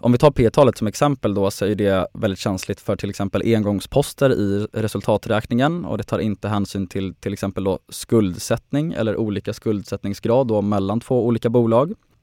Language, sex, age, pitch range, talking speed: Swedish, male, 20-39, 100-120 Hz, 175 wpm